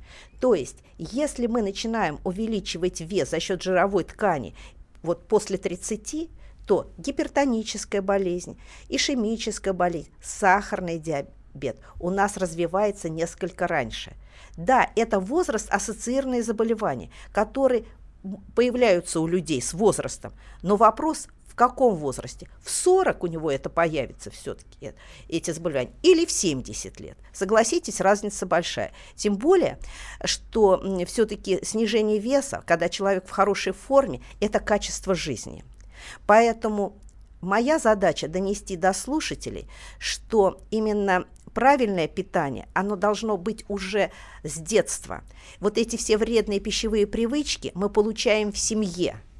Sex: female